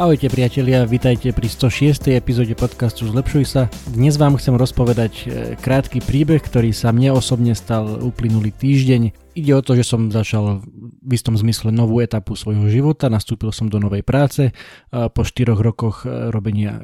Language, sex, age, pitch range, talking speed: Slovak, male, 20-39, 105-125 Hz, 155 wpm